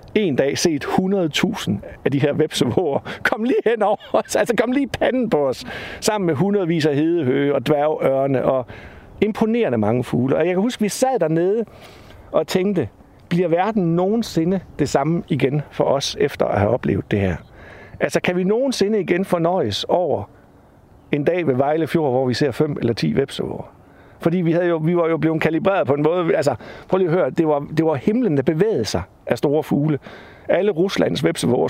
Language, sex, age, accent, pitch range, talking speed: Danish, male, 60-79, native, 140-190 Hz, 195 wpm